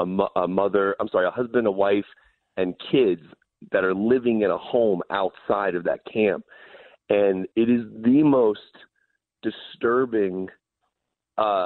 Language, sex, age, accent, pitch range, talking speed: English, male, 30-49, American, 100-150 Hz, 140 wpm